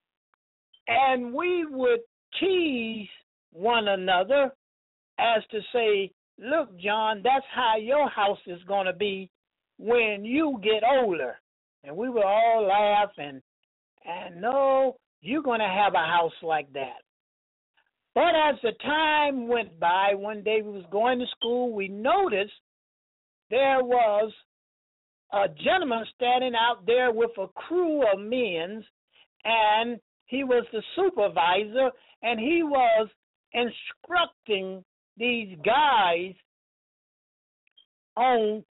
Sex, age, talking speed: male, 60-79, 120 wpm